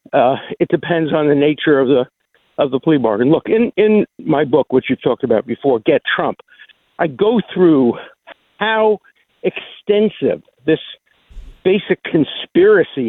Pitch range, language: 130-175 Hz, English